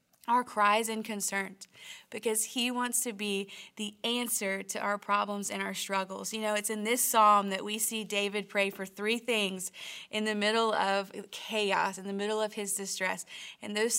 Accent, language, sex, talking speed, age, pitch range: American, English, female, 190 wpm, 20-39, 205-235 Hz